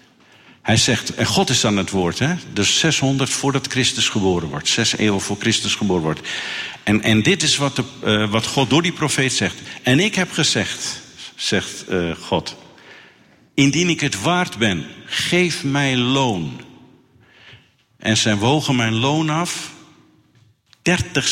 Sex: male